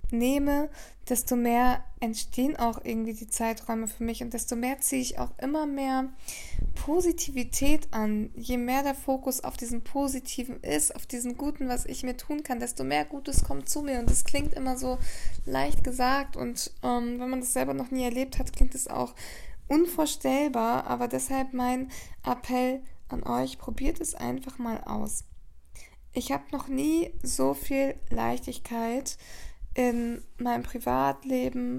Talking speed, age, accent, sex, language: 160 wpm, 20-39, German, female, English